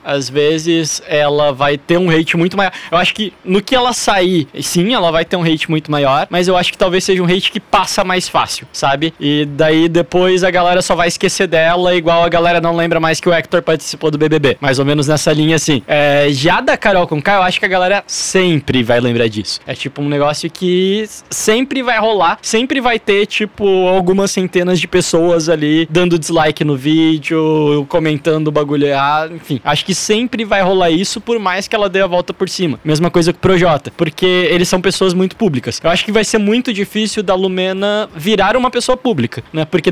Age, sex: 20-39, male